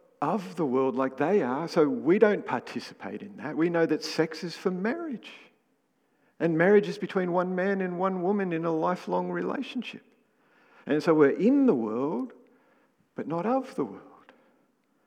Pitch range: 150-250 Hz